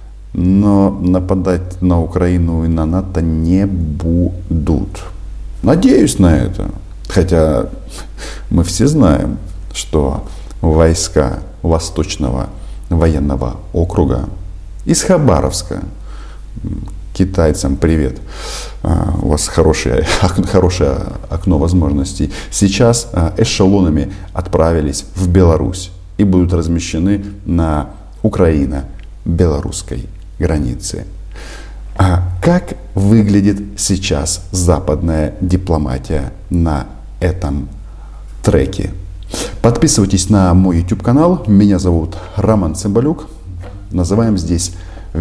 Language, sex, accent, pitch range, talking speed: Russian, male, native, 80-100 Hz, 80 wpm